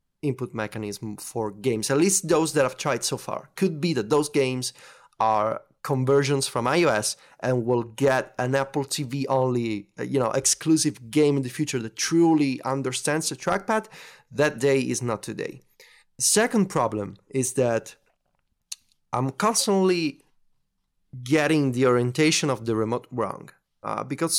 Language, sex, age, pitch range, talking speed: English, male, 30-49, 120-150 Hz, 150 wpm